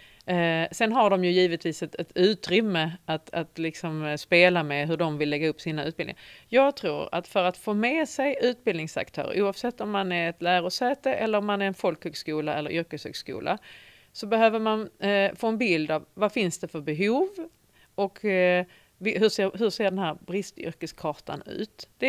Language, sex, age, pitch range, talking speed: Swedish, female, 40-59, 165-215 Hz, 175 wpm